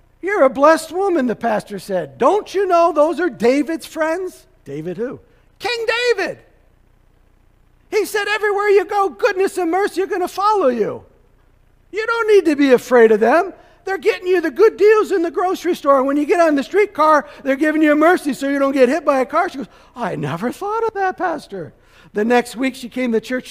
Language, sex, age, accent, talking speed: English, male, 50-69, American, 210 wpm